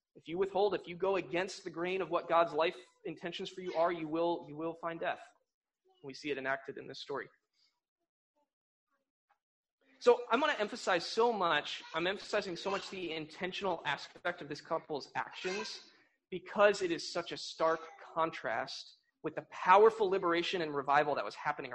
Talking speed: 175 wpm